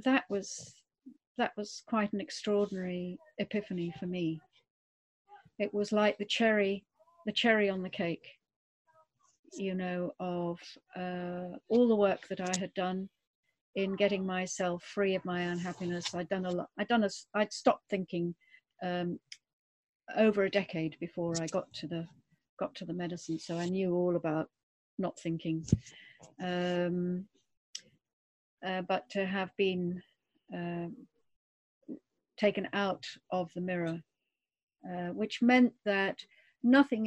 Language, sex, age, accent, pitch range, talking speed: English, female, 40-59, British, 175-210 Hz, 140 wpm